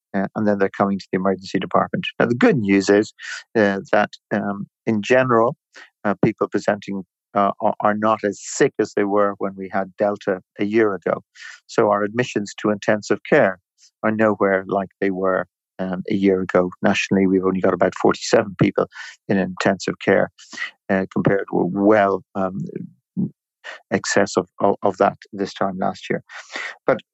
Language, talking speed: English, 170 wpm